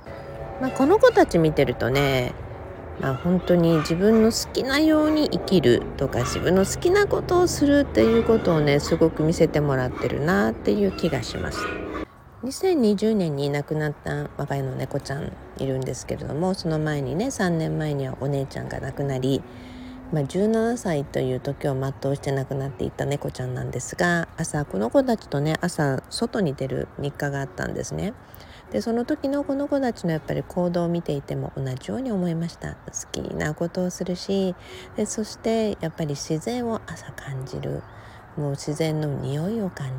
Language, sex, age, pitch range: Japanese, female, 50-69, 135-190 Hz